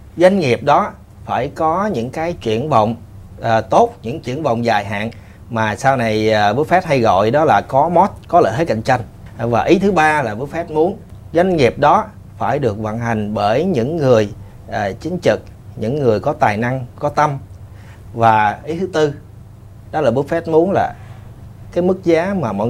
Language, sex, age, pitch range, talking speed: Vietnamese, male, 30-49, 110-160 Hz, 200 wpm